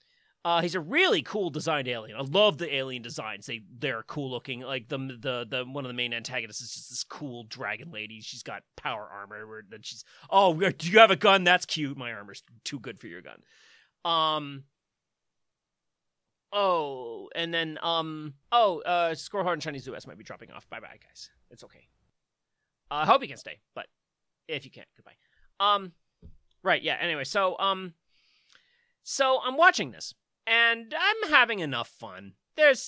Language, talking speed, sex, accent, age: English, 180 wpm, male, American, 30-49